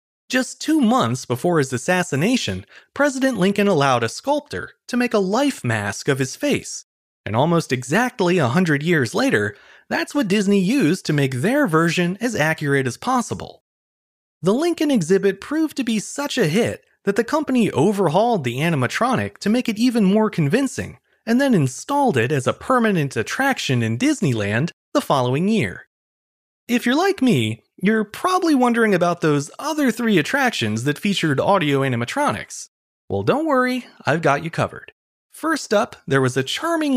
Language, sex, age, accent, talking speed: English, male, 30-49, American, 165 wpm